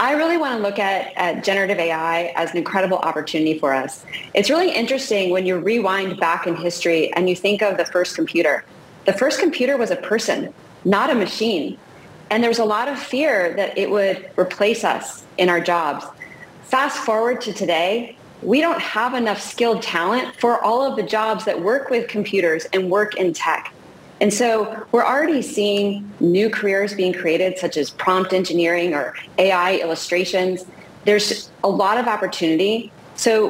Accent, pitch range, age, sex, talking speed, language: American, 170-215 Hz, 30-49, female, 175 wpm, English